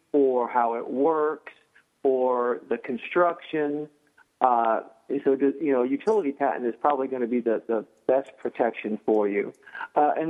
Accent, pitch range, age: American, 120-145 Hz, 40-59